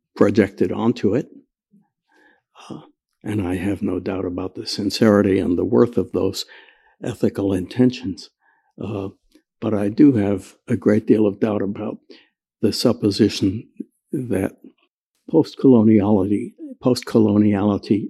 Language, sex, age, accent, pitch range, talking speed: English, male, 60-79, American, 105-130 Hz, 115 wpm